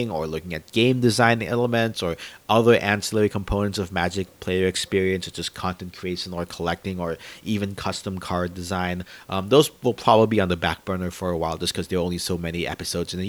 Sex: male